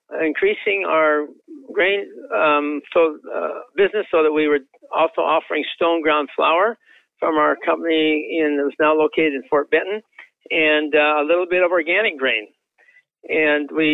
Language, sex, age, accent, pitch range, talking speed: English, male, 50-69, American, 145-200 Hz, 145 wpm